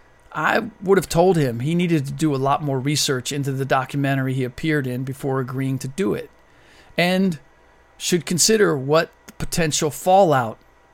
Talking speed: 170 wpm